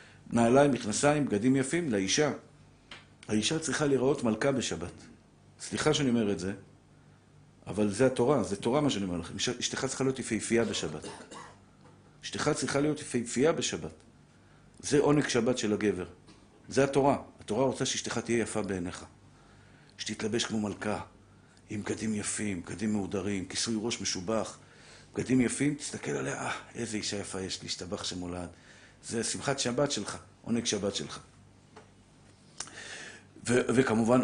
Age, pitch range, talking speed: 50-69, 105-140 Hz, 135 wpm